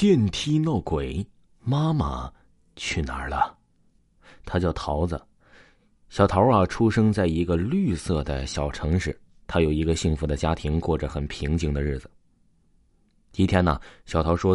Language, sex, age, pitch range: Chinese, male, 20-39, 75-110 Hz